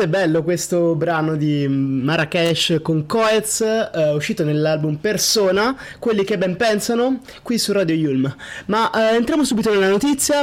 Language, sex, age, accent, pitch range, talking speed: Italian, male, 20-39, native, 160-210 Hz, 145 wpm